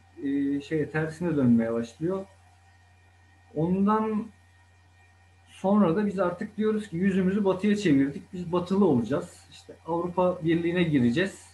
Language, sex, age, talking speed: Turkish, male, 50-69, 110 wpm